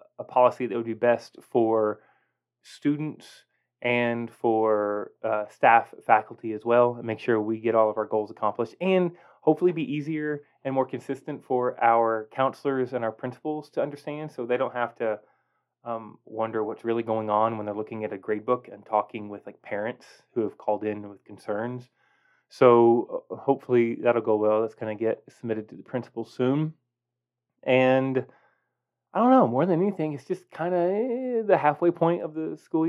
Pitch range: 115-145 Hz